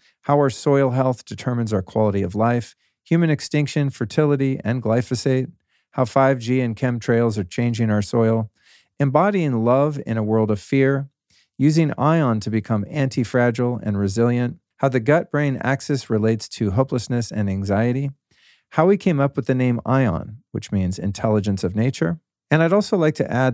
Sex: male